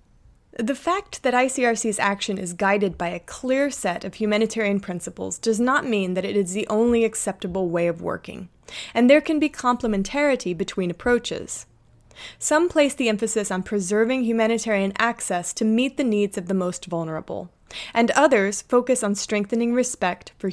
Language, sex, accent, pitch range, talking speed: English, female, American, 190-245 Hz, 165 wpm